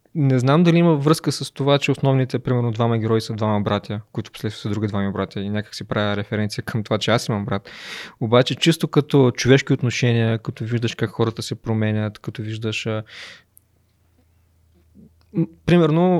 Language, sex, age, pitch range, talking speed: Bulgarian, male, 20-39, 110-130 Hz, 170 wpm